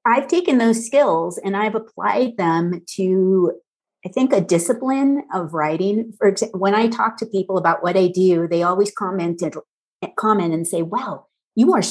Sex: female